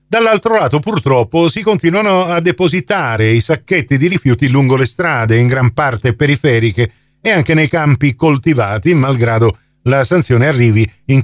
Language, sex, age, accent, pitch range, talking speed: Italian, male, 50-69, native, 120-165 Hz, 150 wpm